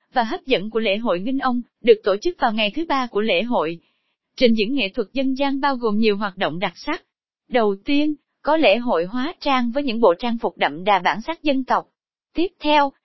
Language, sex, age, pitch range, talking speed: Vietnamese, female, 20-39, 210-280 Hz, 235 wpm